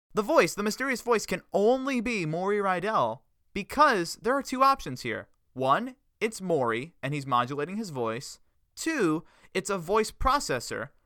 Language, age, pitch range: English, 20-39, 130-215 Hz